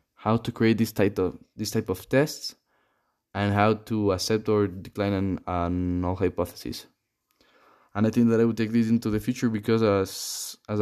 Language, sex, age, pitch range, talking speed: English, male, 10-29, 100-110 Hz, 190 wpm